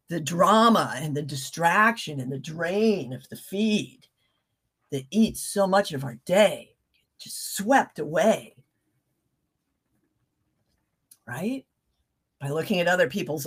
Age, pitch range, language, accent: 50-69, 155-220 Hz, English, American